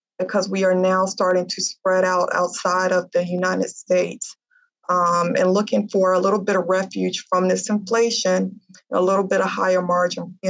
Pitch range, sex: 175-195 Hz, female